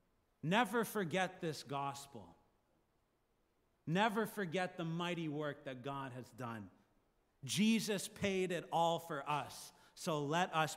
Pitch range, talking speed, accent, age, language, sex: 125-170 Hz, 125 wpm, American, 30-49, English, male